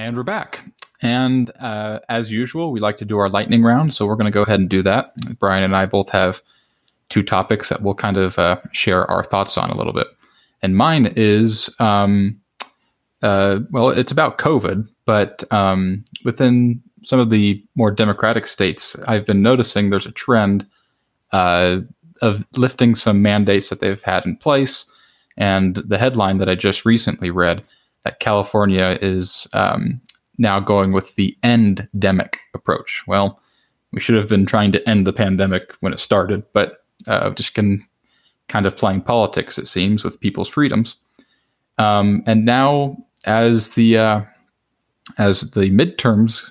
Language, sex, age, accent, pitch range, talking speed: English, male, 20-39, American, 95-115 Hz, 165 wpm